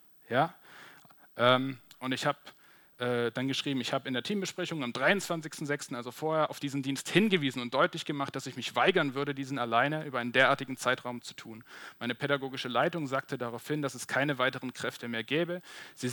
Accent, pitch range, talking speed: German, 130-165 Hz, 175 wpm